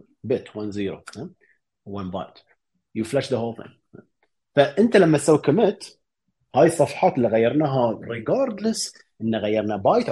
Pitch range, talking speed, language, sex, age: 110-150 Hz, 130 wpm, Arabic, male, 30-49